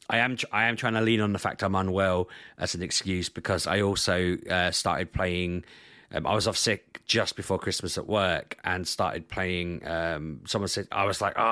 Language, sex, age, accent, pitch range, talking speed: English, male, 30-49, British, 90-105 Hz, 215 wpm